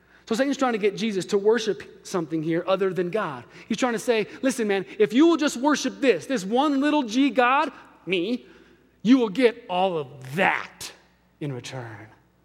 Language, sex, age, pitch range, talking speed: English, male, 30-49, 175-255 Hz, 190 wpm